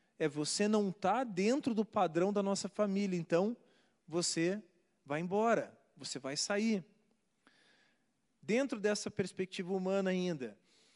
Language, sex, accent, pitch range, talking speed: Portuguese, male, Brazilian, 175-230 Hz, 120 wpm